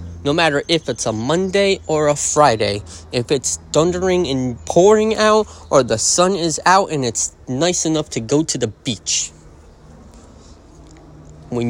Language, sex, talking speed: English, male, 155 wpm